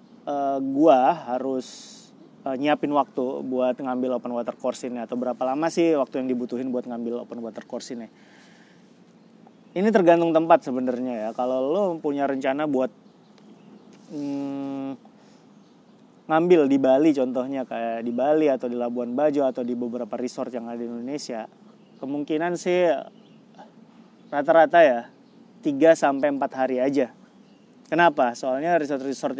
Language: Indonesian